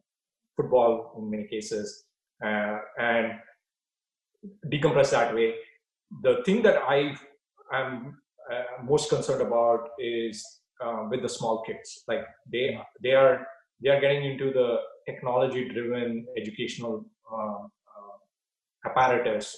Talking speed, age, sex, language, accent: 115 wpm, 30-49, male, English, Indian